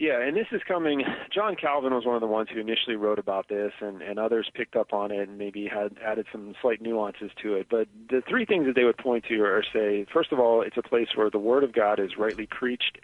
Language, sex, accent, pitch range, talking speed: English, male, American, 105-120 Hz, 265 wpm